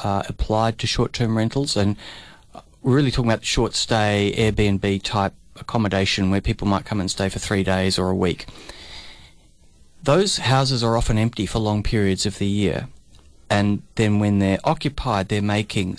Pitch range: 95-115 Hz